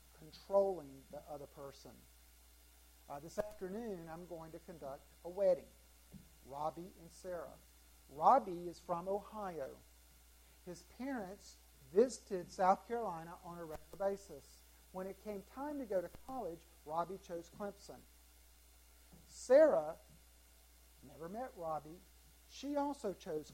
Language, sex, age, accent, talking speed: English, male, 50-69, American, 120 wpm